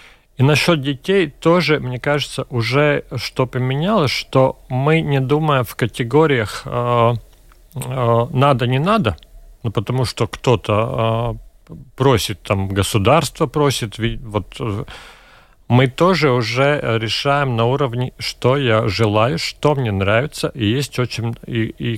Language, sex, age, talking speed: Russian, male, 40-59, 110 wpm